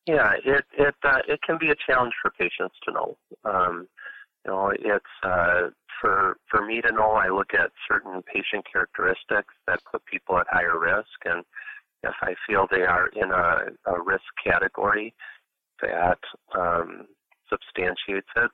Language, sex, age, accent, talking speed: English, male, 40-59, American, 160 wpm